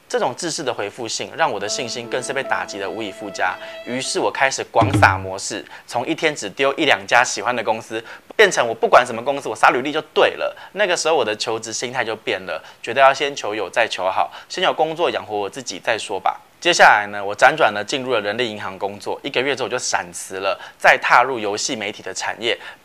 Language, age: Chinese, 20-39